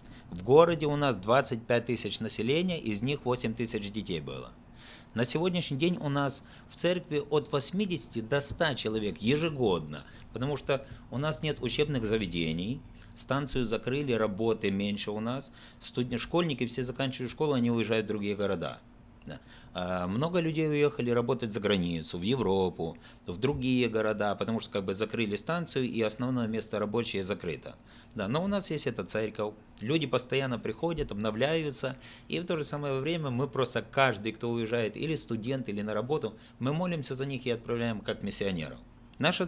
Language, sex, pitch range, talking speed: Russian, male, 110-140 Hz, 160 wpm